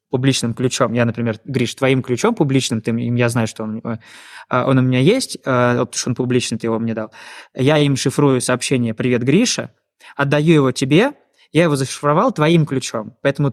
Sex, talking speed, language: male, 175 wpm, Russian